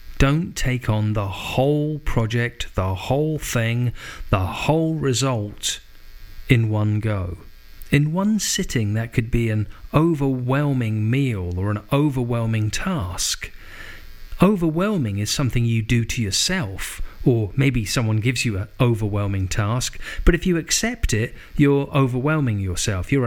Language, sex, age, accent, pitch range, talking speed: English, male, 40-59, British, 105-140 Hz, 135 wpm